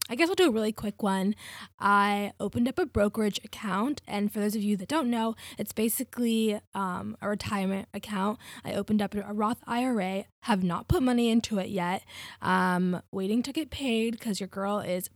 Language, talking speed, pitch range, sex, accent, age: English, 200 wpm, 195-240 Hz, female, American, 10-29